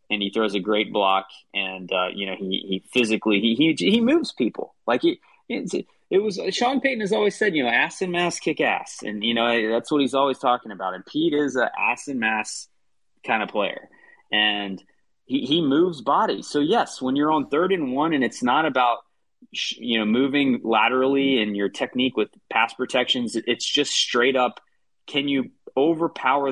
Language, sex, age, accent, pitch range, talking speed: English, male, 30-49, American, 105-155 Hz, 200 wpm